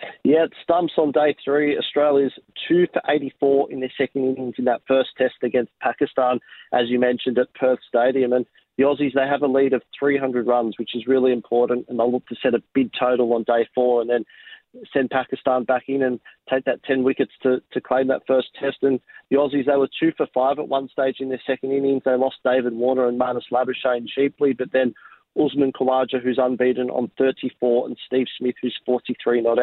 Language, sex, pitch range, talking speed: English, male, 120-130 Hz, 215 wpm